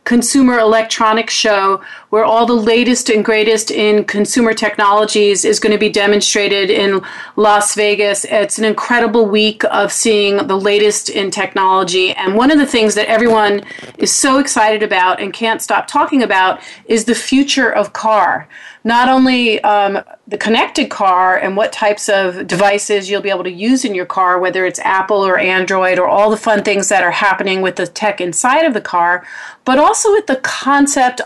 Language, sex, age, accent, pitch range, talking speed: English, female, 40-59, American, 200-240 Hz, 180 wpm